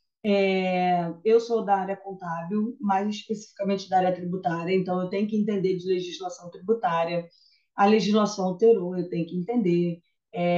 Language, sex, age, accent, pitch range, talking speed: Portuguese, female, 20-39, Brazilian, 180-225 Hz, 155 wpm